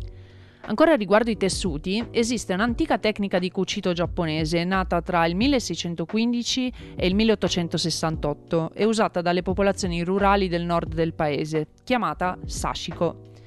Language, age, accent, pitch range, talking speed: Italian, 30-49, native, 170-200 Hz, 125 wpm